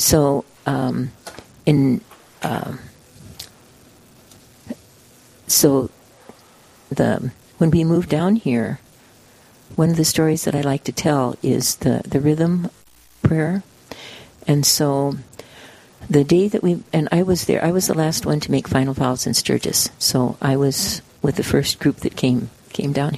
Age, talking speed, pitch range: 50-69, 150 wpm, 135-160 Hz